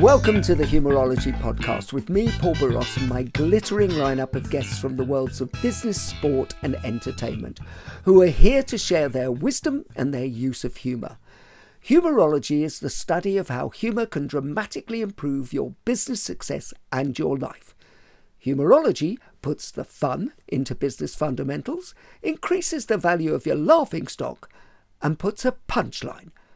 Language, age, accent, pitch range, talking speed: English, 50-69, British, 130-205 Hz, 155 wpm